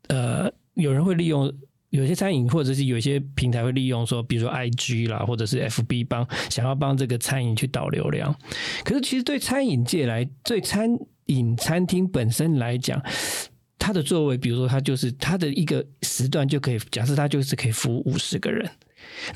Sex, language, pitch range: male, Chinese, 125-155 Hz